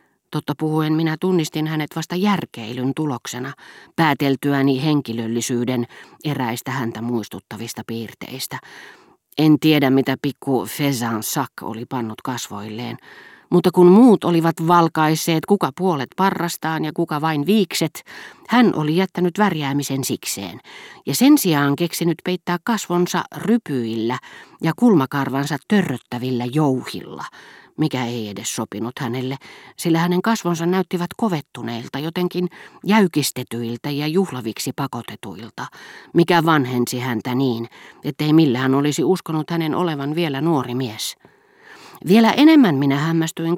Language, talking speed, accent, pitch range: Finnish, 115 wpm, native, 125-170 Hz